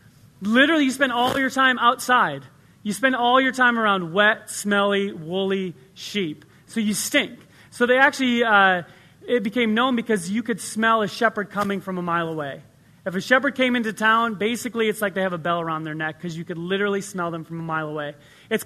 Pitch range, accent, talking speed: 175-240 Hz, American, 210 wpm